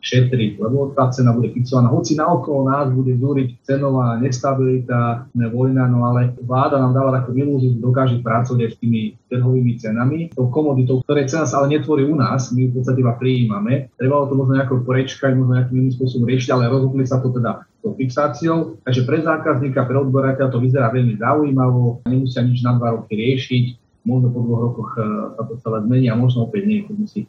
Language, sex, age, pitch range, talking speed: Slovak, male, 30-49, 120-135 Hz, 200 wpm